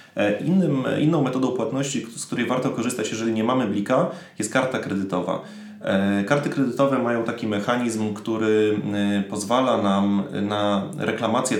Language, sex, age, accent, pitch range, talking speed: Polish, male, 30-49, native, 105-120 Hz, 125 wpm